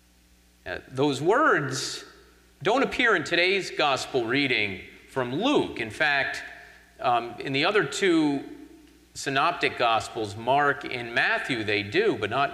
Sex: male